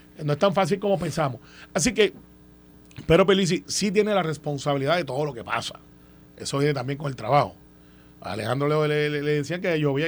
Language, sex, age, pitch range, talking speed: Spanish, male, 30-49, 140-185 Hz, 200 wpm